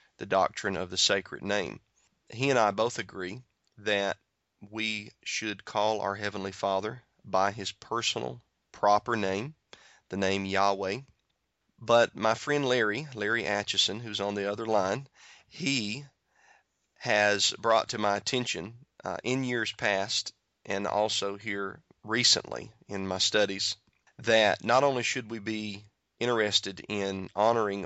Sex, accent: male, American